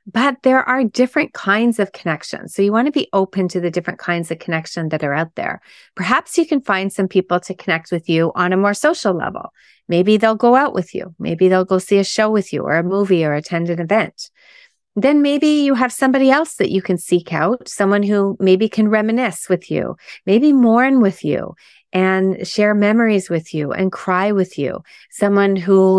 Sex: female